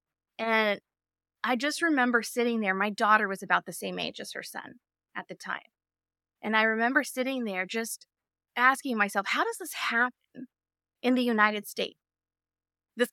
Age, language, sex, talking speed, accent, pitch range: 20-39, English, female, 165 wpm, American, 180-245 Hz